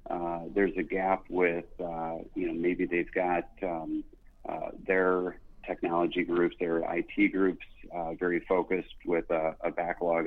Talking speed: 150 wpm